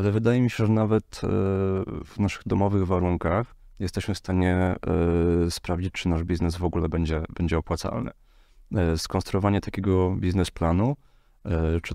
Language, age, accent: Polish, 30-49, native